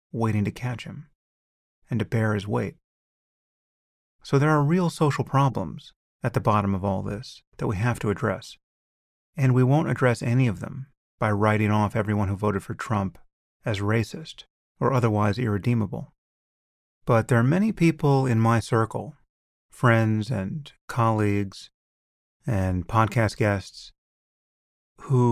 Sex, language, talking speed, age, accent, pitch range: male, English, 145 wpm, 30-49, American, 105-135 Hz